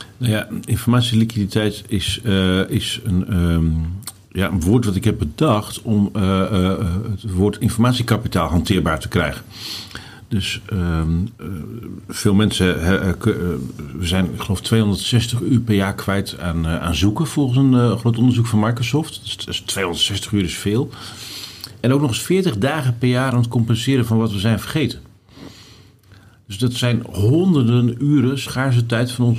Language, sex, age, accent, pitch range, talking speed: Dutch, male, 50-69, Dutch, 100-120 Hz, 160 wpm